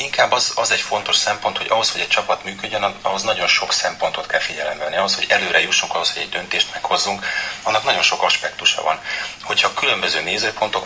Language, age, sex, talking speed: Hungarian, 30-49, male, 200 wpm